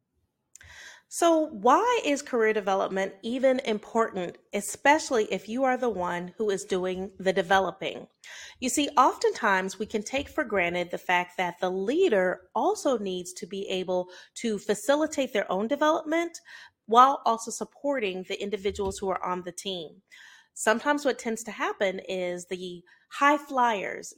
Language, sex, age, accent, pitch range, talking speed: English, female, 30-49, American, 195-280 Hz, 150 wpm